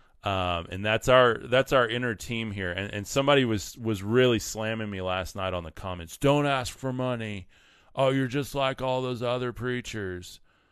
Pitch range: 90-110 Hz